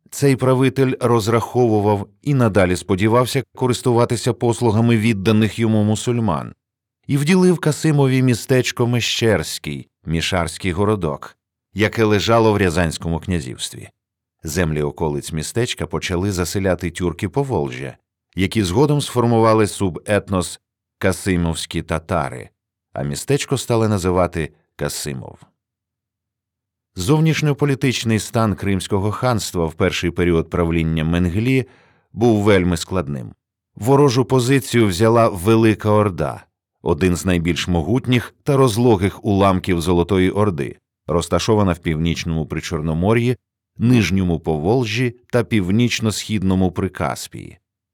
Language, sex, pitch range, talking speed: Ukrainian, male, 90-120 Hz, 95 wpm